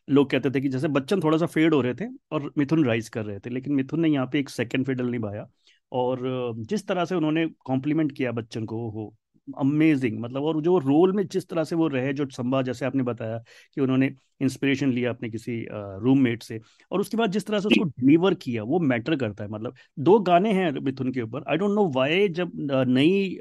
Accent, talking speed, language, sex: native, 225 wpm, Hindi, male